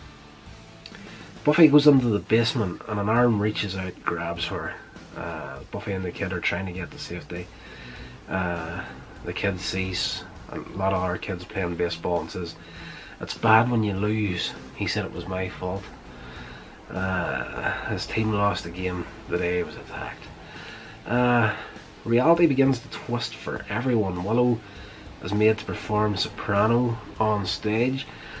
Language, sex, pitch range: English, male, 95-110 Hz